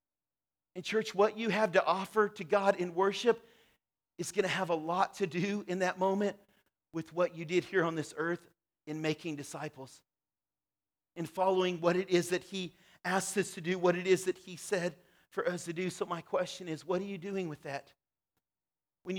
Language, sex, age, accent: English, male, 40-59, American